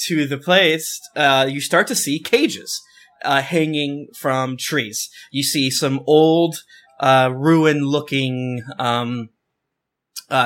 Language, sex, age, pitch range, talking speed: English, male, 20-39, 125-155 Hz, 120 wpm